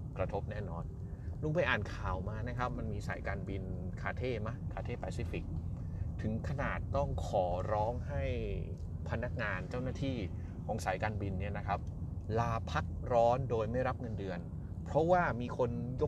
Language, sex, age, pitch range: Thai, male, 30-49, 85-110 Hz